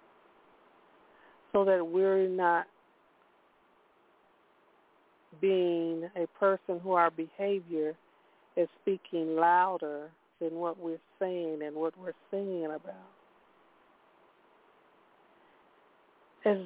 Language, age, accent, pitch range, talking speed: English, 50-69, American, 185-210 Hz, 85 wpm